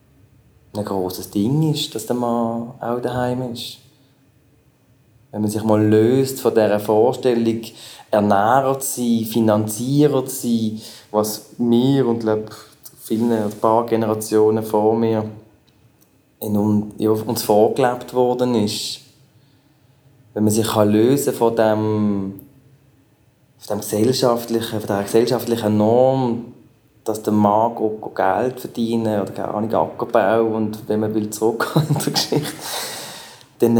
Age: 20-39